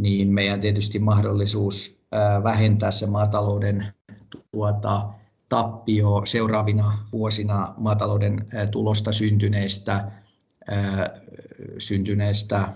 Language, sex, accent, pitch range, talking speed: Finnish, male, native, 100-110 Hz, 70 wpm